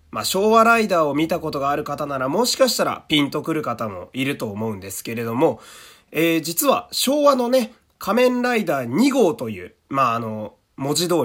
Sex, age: male, 30-49